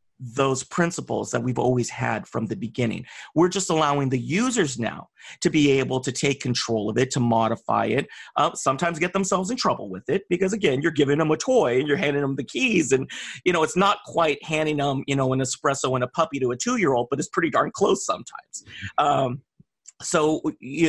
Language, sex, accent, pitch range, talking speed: English, male, American, 130-170 Hz, 215 wpm